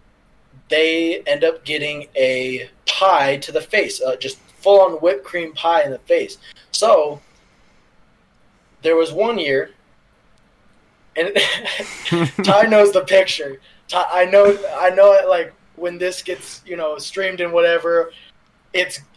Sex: male